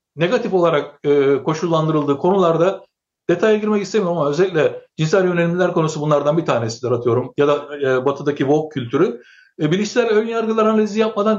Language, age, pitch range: Turkish, 60-79, 160-210 Hz